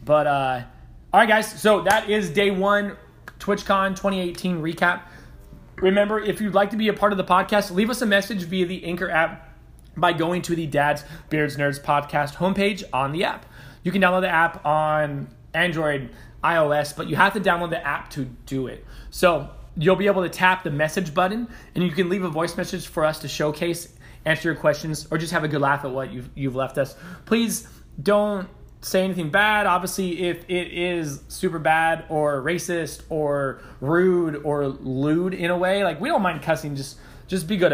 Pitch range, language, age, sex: 140-185 Hz, English, 20-39, male